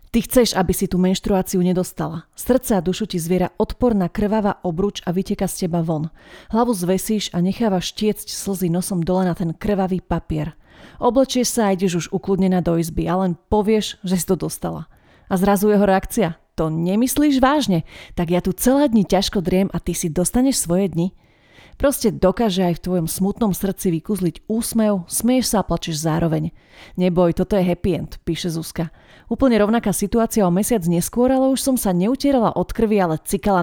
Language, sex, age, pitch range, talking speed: Slovak, female, 30-49, 175-210 Hz, 180 wpm